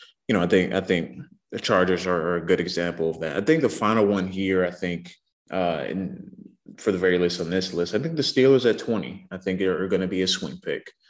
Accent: American